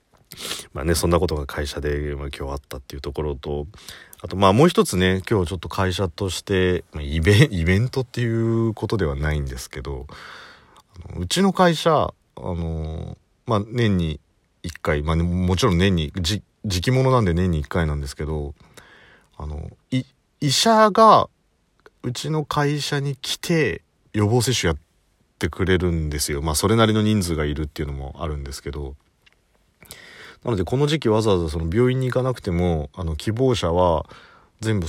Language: Japanese